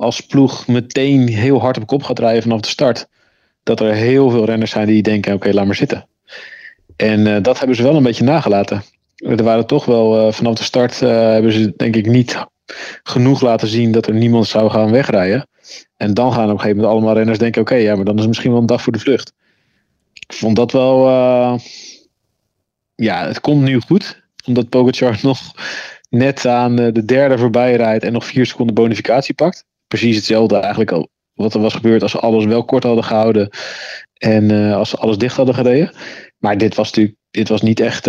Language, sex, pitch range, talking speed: Dutch, male, 110-125 Hz, 210 wpm